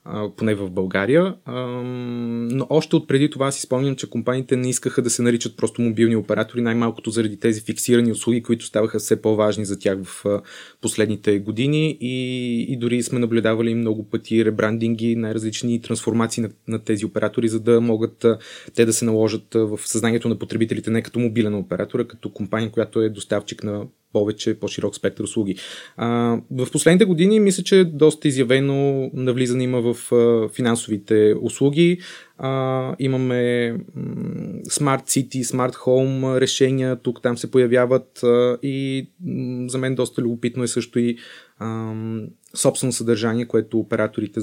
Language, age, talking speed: Bulgarian, 20-39, 150 wpm